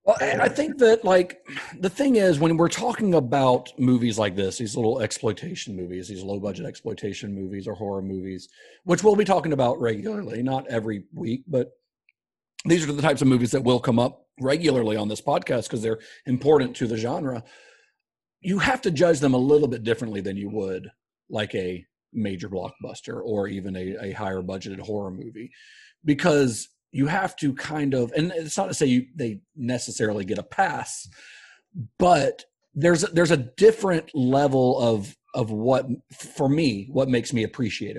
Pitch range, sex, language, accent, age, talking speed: 110-160 Hz, male, English, American, 40-59, 180 wpm